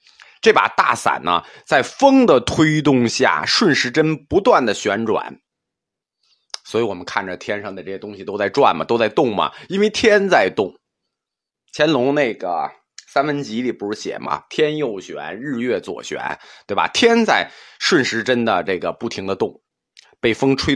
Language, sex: Chinese, male